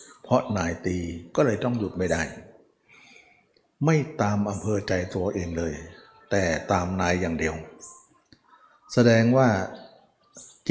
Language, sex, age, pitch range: Thai, male, 60-79, 95-145 Hz